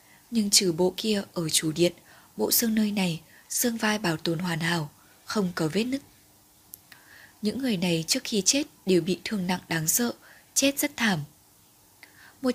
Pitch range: 170-225 Hz